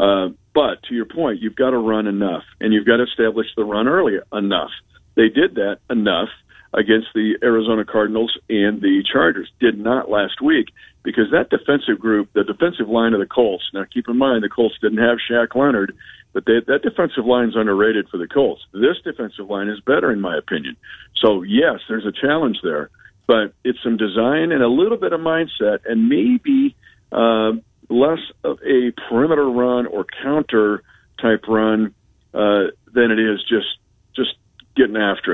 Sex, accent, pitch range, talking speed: male, American, 105-120 Hz, 185 wpm